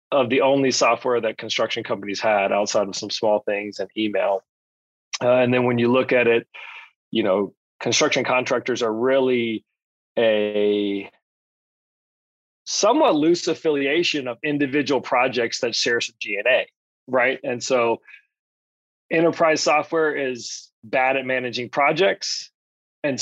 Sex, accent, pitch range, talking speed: male, American, 115-140 Hz, 130 wpm